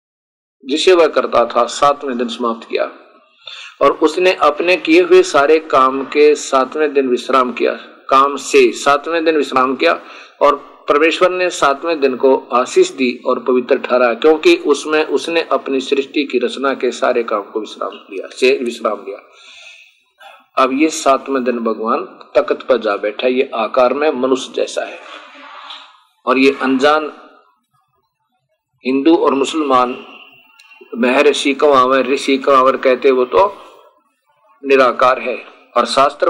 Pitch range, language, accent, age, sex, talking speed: 135-170 Hz, Hindi, native, 50-69, male, 140 wpm